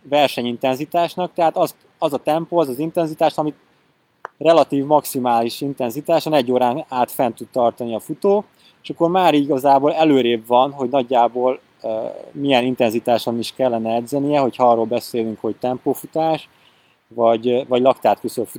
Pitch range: 125-155 Hz